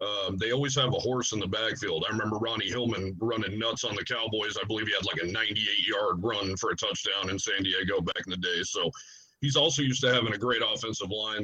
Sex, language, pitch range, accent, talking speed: male, English, 105-125 Hz, American, 240 wpm